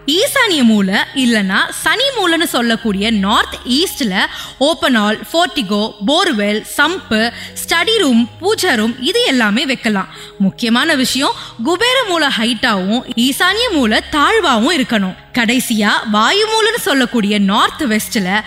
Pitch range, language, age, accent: 215-300 Hz, Tamil, 20-39, native